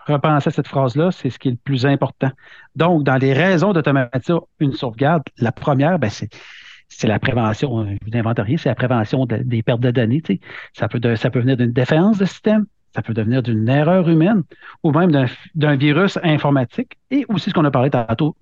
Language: French